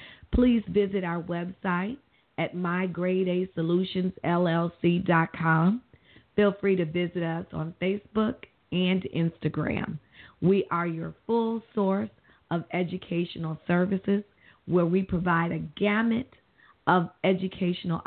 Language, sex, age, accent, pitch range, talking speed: English, female, 40-59, American, 170-205 Hz, 100 wpm